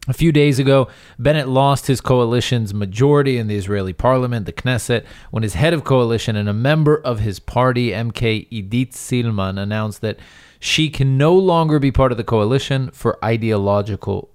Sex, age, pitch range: male, 30-49, 105-135 Hz